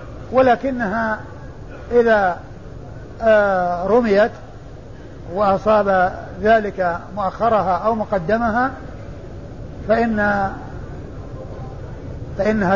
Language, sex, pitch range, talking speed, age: Arabic, male, 145-220 Hz, 50 wpm, 50-69